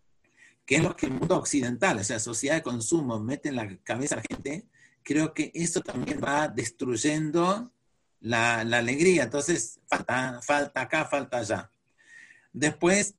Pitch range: 120-165 Hz